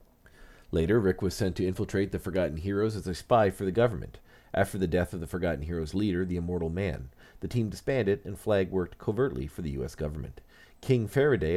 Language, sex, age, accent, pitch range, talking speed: English, male, 40-59, American, 80-100 Hz, 200 wpm